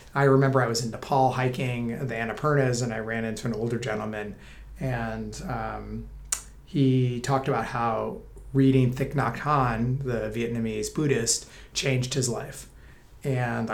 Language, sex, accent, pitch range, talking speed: English, male, American, 115-140 Hz, 145 wpm